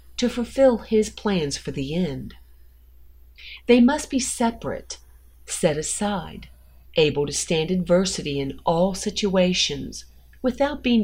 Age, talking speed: 40-59, 120 wpm